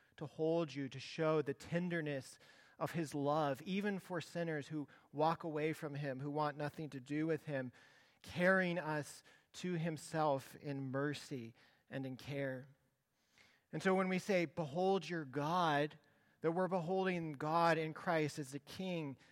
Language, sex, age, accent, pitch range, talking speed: English, male, 40-59, American, 135-165 Hz, 160 wpm